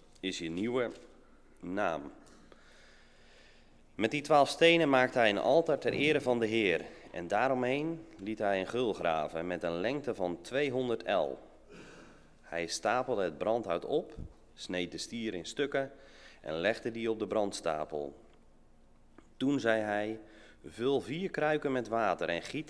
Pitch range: 90-135 Hz